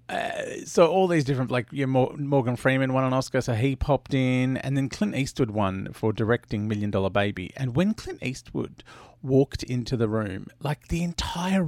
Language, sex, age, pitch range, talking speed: English, male, 40-59, 115-165 Hz, 185 wpm